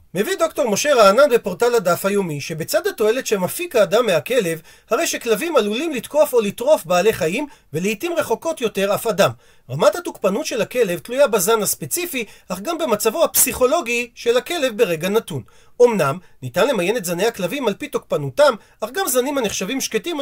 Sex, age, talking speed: male, 40-59, 160 wpm